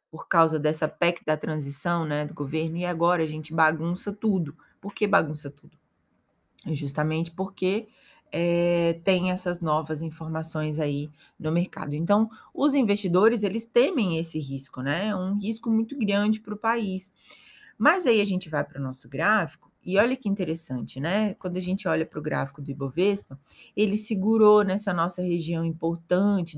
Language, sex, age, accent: Portuguese, female, 20-39, Brazilian